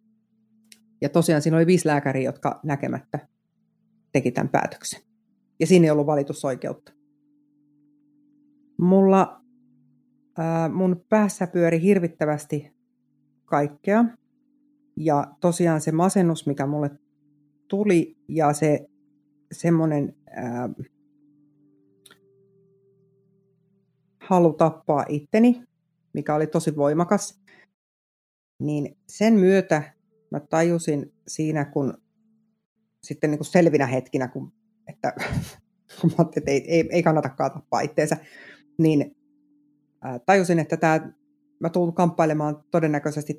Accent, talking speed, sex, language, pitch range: native, 95 wpm, female, Finnish, 145-195 Hz